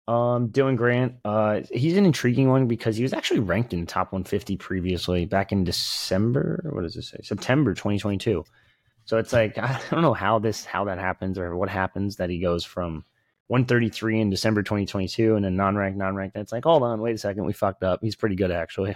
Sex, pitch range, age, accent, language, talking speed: male, 95-115 Hz, 20-39, American, English, 215 wpm